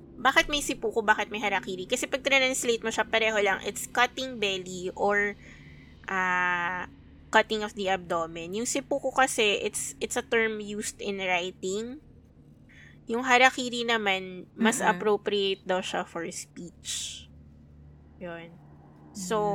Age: 20-39